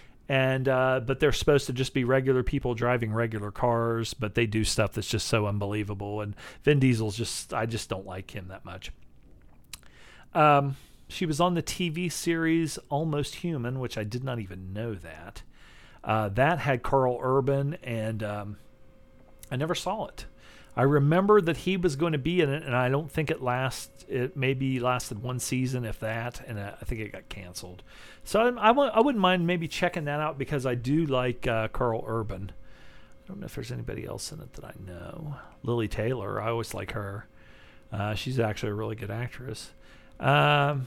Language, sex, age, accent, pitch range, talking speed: English, male, 40-59, American, 110-140 Hz, 190 wpm